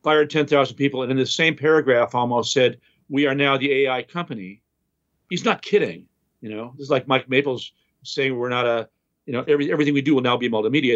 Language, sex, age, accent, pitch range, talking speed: English, male, 50-69, American, 130-165 Hz, 215 wpm